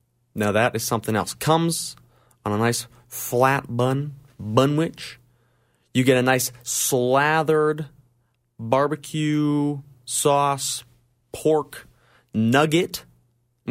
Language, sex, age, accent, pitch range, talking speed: English, male, 30-49, American, 115-140 Hz, 100 wpm